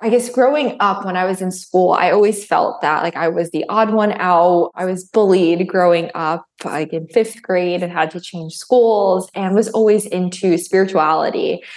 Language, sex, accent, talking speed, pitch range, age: English, female, American, 200 wpm, 175-220 Hz, 20-39